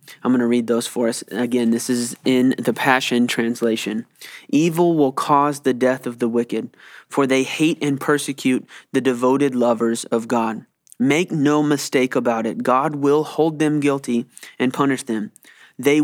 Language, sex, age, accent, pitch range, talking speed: English, male, 20-39, American, 120-135 Hz, 170 wpm